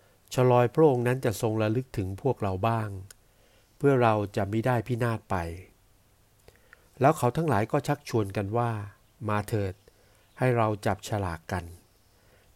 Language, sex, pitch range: Thai, male, 100-120 Hz